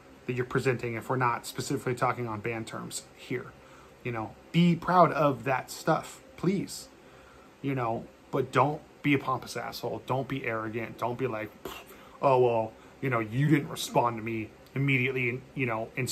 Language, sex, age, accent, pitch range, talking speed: English, male, 30-49, American, 110-135 Hz, 175 wpm